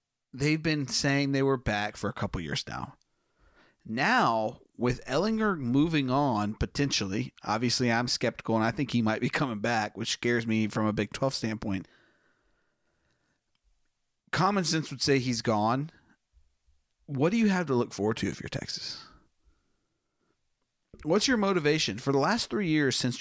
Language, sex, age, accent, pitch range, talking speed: English, male, 40-59, American, 115-145 Hz, 160 wpm